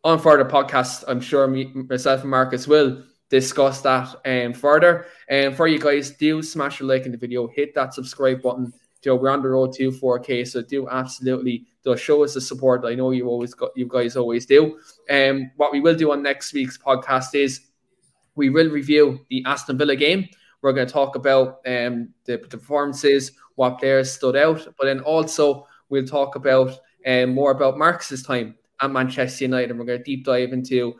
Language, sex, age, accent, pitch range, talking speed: English, male, 20-39, Irish, 125-140 Hz, 205 wpm